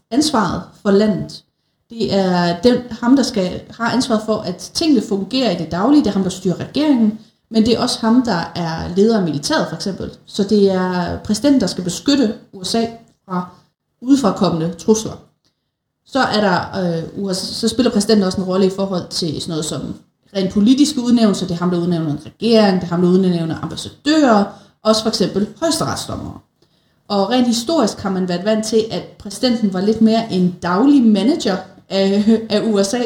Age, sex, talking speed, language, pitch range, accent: 30-49, female, 180 wpm, Danish, 180-225 Hz, native